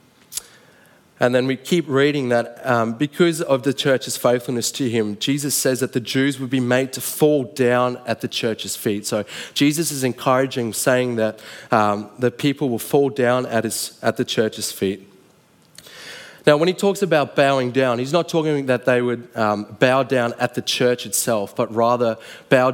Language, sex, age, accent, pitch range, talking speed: English, male, 20-39, Australian, 110-135 Hz, 180 wpm